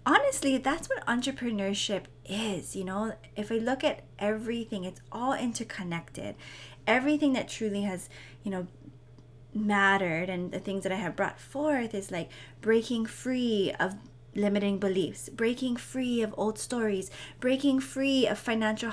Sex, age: female, 20-39